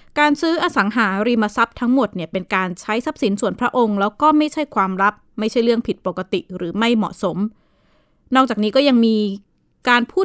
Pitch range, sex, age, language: 195-250 Hz, female, 20-39, Thai